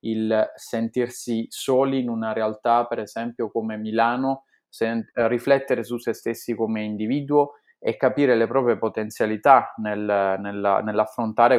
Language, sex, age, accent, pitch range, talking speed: Italian, male, 20-39, native, 110-125 Hz, 115 wpm